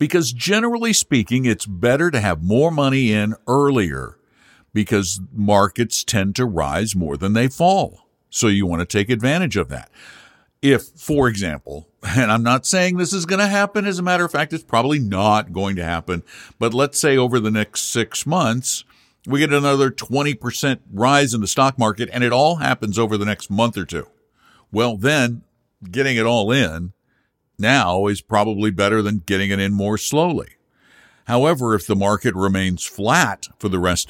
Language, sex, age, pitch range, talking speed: English, male, 60-79, 100-135 Hz, 180 wpm